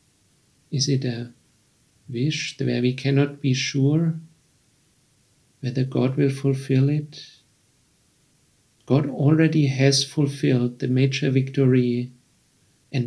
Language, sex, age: English, male, 50-69